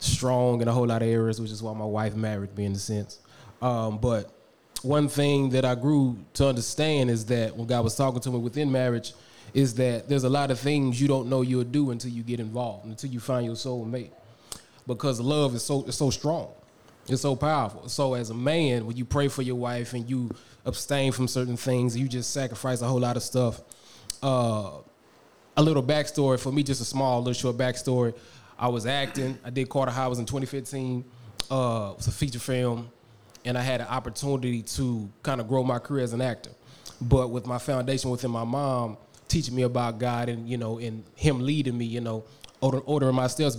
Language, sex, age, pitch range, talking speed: English, male, 20-39, 115-135 Hz, 215 wpm